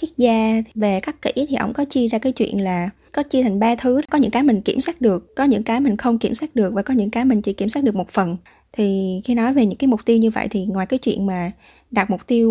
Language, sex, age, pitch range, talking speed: Vietnamese, female, 20-39, 210-255 Hz, 295 wpm